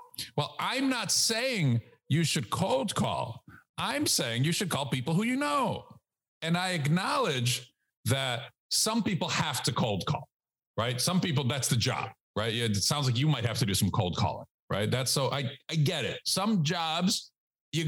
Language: English